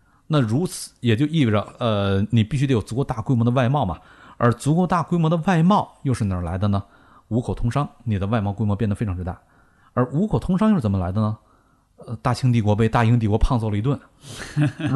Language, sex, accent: Chinese, male, native